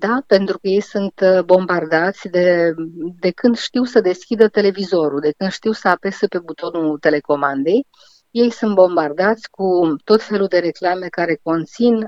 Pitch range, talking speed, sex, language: 170-200 Hz, 155 wpm, female, Romanian